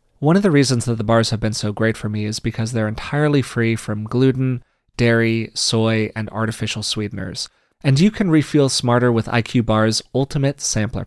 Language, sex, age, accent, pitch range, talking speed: English, male, 30-49, American, 110-140 Hz, 190 wpm